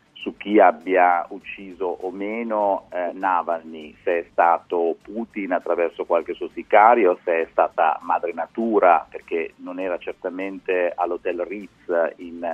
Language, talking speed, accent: Italian, 135 wpm, native